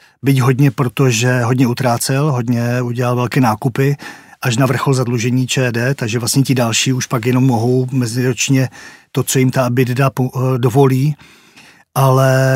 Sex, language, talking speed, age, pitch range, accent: male, Czech, 145 wpm, 40-59, 125-135 Hz, native